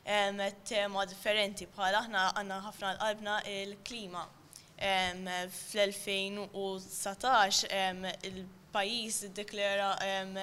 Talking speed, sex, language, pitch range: 70 wpm, female, English, 195-220 Hz